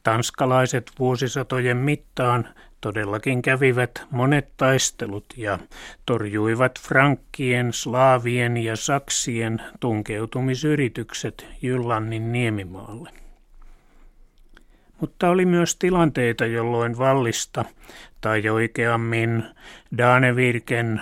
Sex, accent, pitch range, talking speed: male, native, 115-135 Hz, 70 wpm